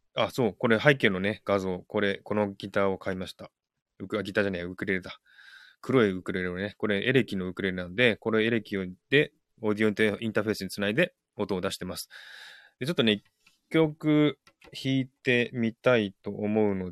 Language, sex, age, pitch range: Japanese, male, 20-39, 95-125 Hz